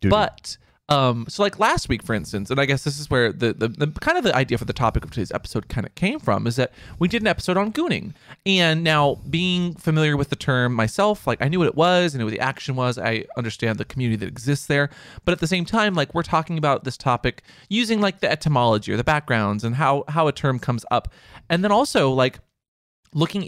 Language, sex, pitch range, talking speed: English, male, 115-155 Hz, 245 wpm